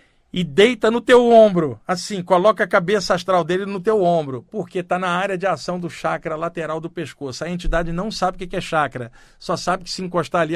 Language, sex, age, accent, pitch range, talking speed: Portuguese, male, 50-69, Brazilian, 150-180 Hz, 220 wpm